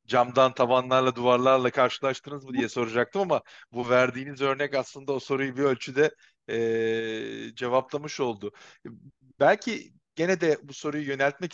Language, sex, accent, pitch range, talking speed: Turkish, male, native, 125-145 Hz, 130 wpm